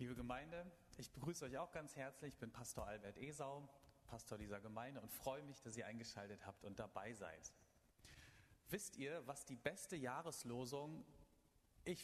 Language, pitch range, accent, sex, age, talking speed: German, 105-135 Hz, German, male, 30-49, 165 wpm